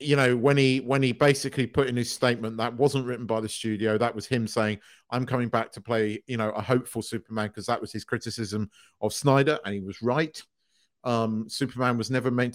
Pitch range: 115-140 Hz